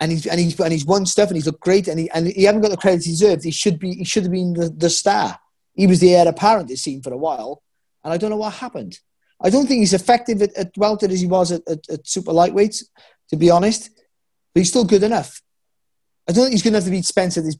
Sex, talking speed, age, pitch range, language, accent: male, 285 wpm, 30-49, 155-195 Hz, English, British